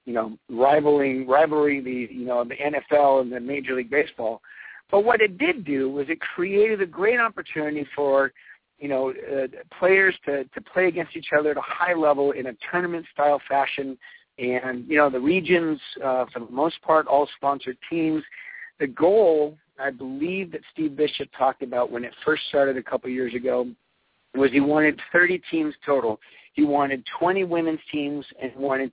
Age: 50-69